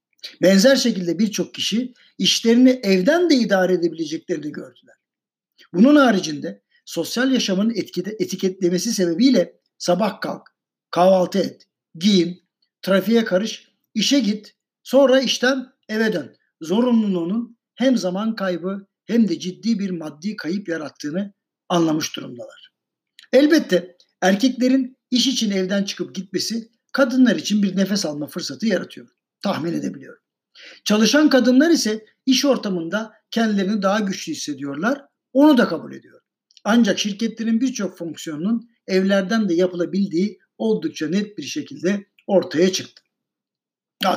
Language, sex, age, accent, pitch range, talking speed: Turkish, male, 60-79, native, 180-235 Hz, 115 wpm